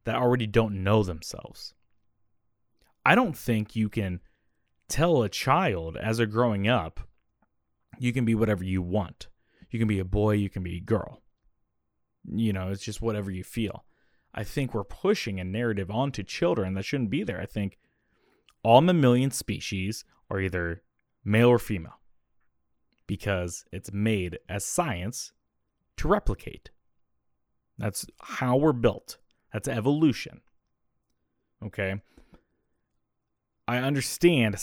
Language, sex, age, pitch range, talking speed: English, male, 20-39, 100-130 Hz, 135 wpm